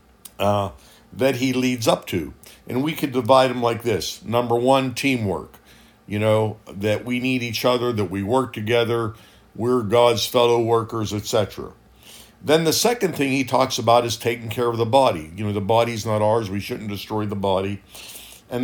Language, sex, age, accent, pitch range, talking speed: English, male, 50-69, American, 105-135 Hz, 185 wpm